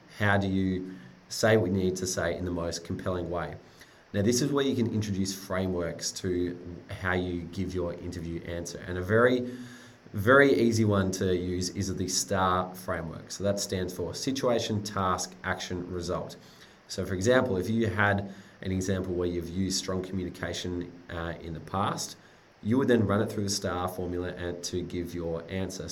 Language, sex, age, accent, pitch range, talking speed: English, male, 20-39, Australian, 90-100 Hz, 185 wpm